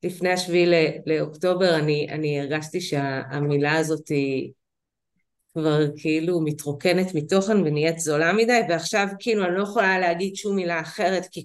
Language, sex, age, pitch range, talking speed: Hebrew, female, 30-49, 170-225 Hz, 135 wpm